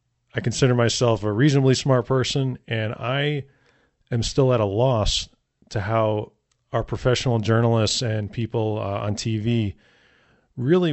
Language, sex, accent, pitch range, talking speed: English, male, American, 110-130 Hz, 135 wpm